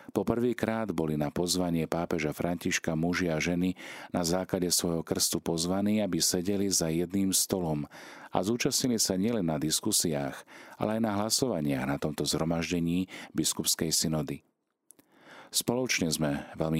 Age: 40-59